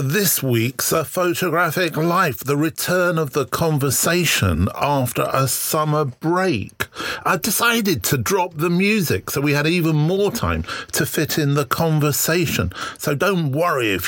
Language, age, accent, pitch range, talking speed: English, 50-69, British, 115-170 Hz, 155 wpm